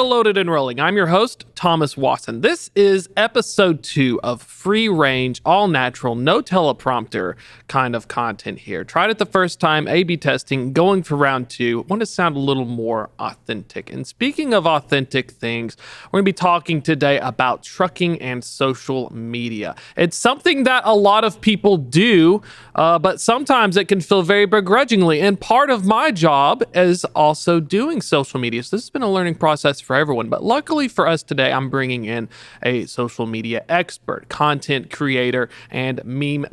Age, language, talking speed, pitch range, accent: 40-59, English, 175 wpm, 130-205 Hz, American